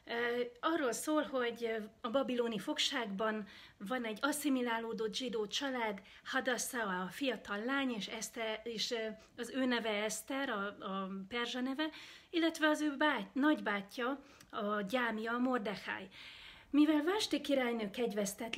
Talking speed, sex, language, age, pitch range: 125 wpm, female, Hungarian, 40-59, 215-265 Hz